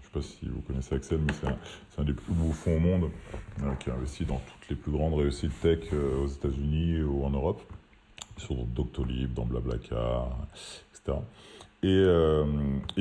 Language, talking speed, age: French, 175 wpm, 30-49